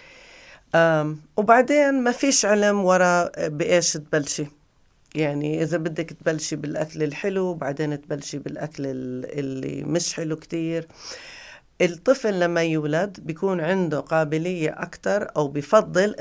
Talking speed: 110 wpm